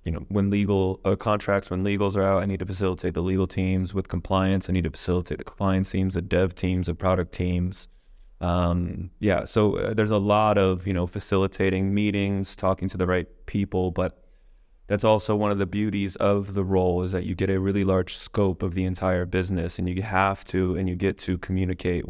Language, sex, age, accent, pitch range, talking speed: English, male, 20-39, American, 90-95 Hz, 215 wpm